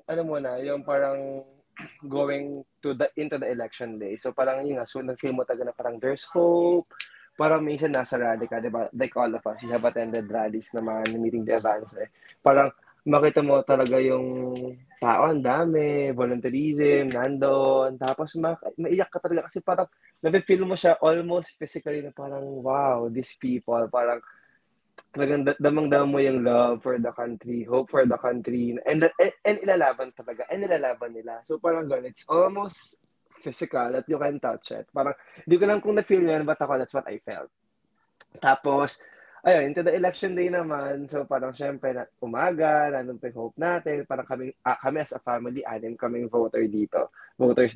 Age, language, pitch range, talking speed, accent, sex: 20-39, Filipino, 125-155 Hz, 175 wpm, native, male